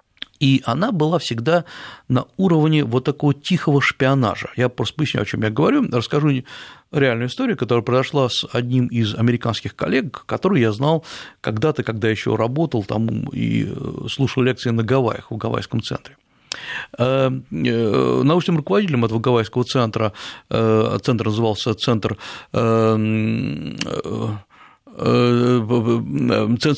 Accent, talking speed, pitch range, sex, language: native, 115 wpm, 115-145 Hz, male, Russian